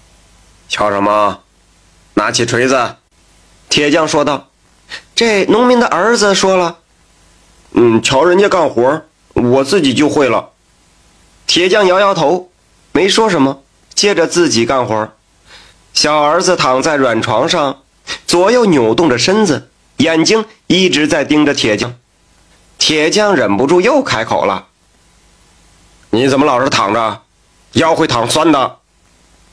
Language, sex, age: Chinese, male, 30-49